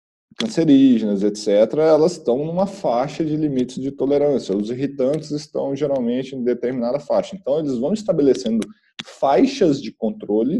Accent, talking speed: Brazilian, 135 wpm